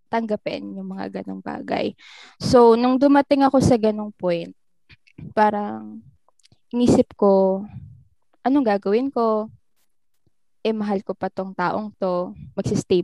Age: 10-29